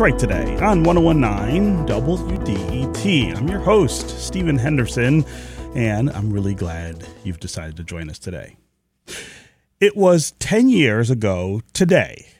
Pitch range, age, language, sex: 110-160 Hz, 30-49, English, male